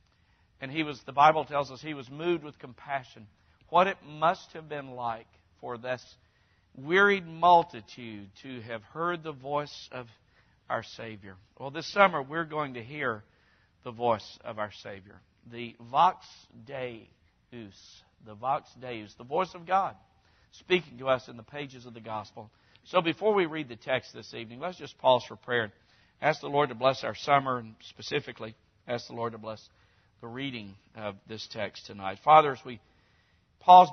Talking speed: 175 wpm